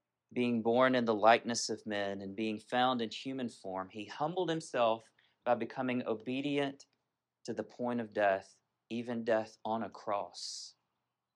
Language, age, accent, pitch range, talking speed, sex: English, 40-59, American, 125-165 Hz, 155 wpm, male